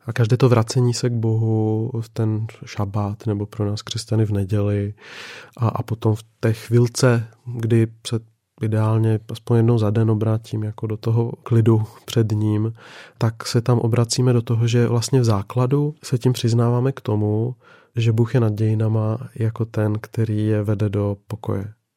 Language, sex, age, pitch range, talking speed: Czech, male, 30-49, 110-120 Hz, 165 wpm